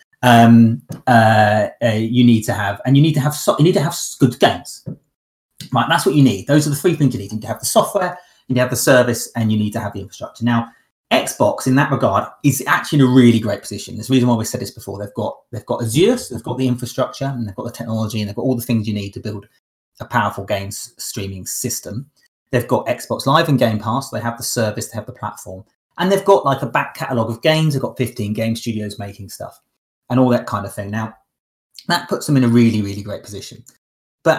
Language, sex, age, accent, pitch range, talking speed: English, male, 30-49, British, 110-140 Hz, 260 wpm